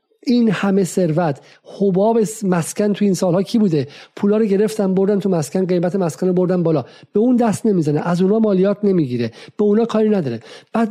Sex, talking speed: male, 180 wpm